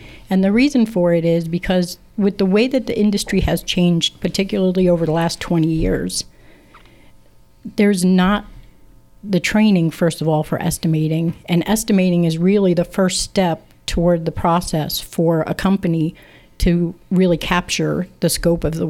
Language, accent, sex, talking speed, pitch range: English, American, female, 160 wpm, 165-185 Hz